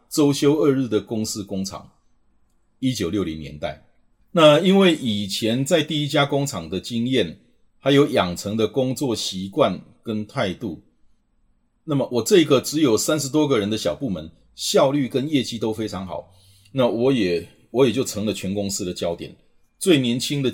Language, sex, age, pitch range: Chinese, male, 30-49, 95-140 Hz